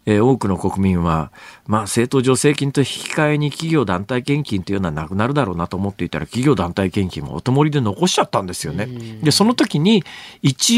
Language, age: Japanese, 40-59